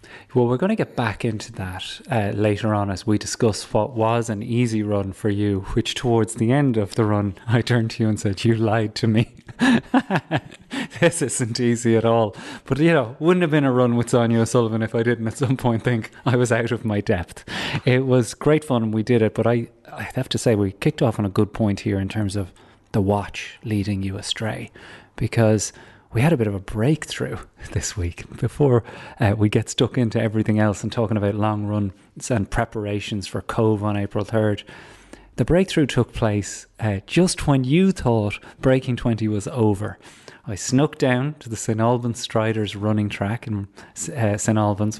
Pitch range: 105-125 Hz